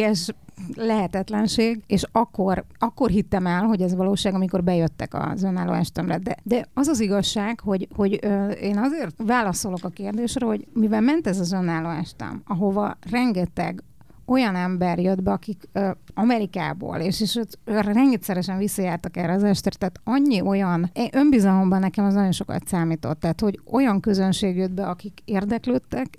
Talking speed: 160 wpm